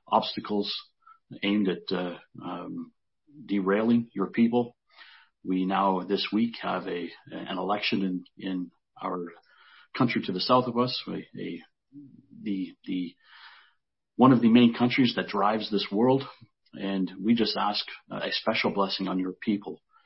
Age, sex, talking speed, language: 40-59, male, 145 wpm, English